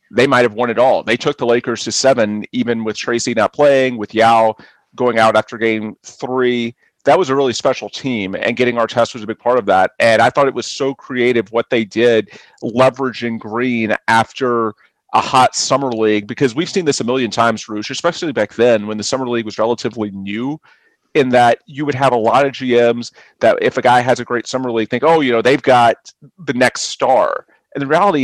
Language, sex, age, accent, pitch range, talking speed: English, male, 40-59, American, 115-135 Hz, 225 wpm